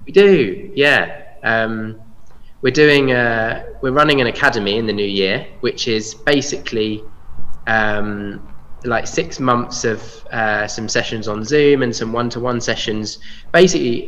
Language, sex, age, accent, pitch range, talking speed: English, male, 20-39, British, 95-115 Hz, 140 wpm